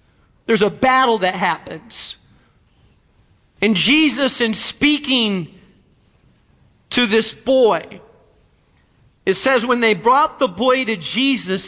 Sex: male